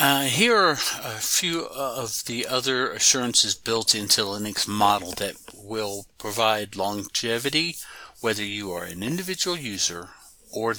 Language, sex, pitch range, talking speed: English, male, 100-120 Hz, 135 wpm